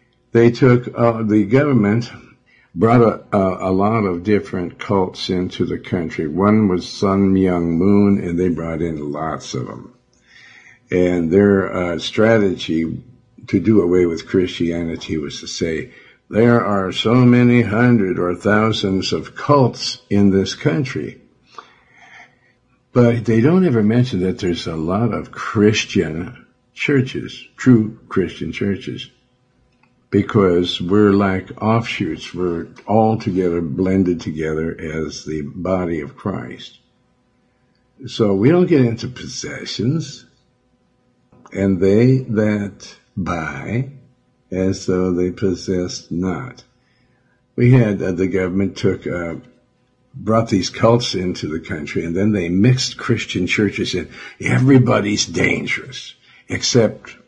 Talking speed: 125 wpm